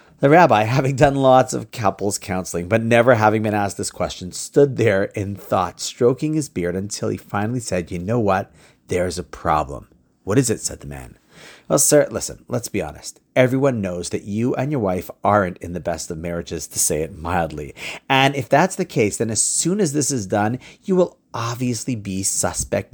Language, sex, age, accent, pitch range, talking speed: English, male, 40-59, American, 100-145 Hz, 205 wpm